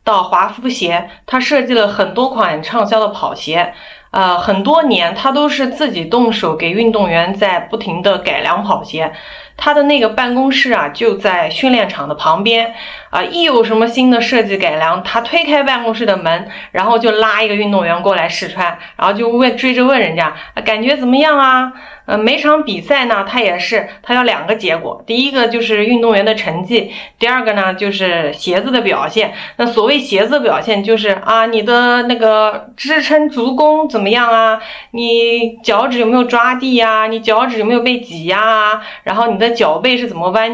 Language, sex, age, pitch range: Chinese, female, 30-49, 200-255 Hz